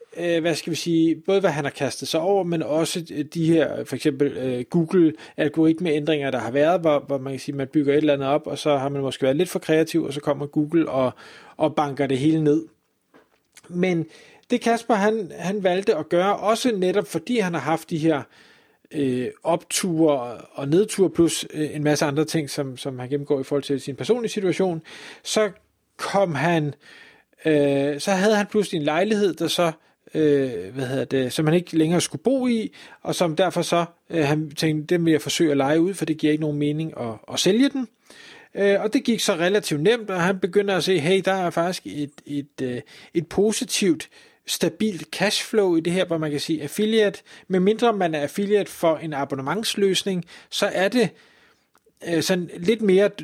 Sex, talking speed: male, 205 wpm